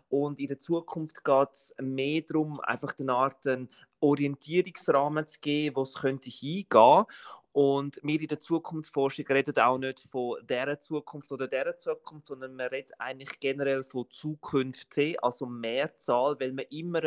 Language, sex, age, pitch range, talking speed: German, male, 30-49, 125-145 Hz, 160 wpm